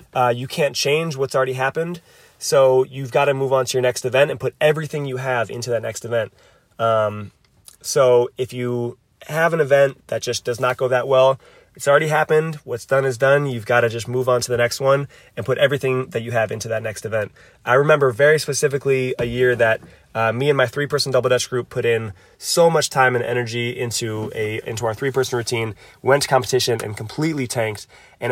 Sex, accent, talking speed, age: male, American, 215 wpm, 20-39